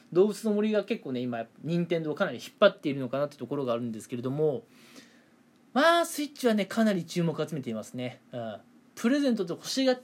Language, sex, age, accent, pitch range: Japanese, male, 20-39, native, 145-230 Hz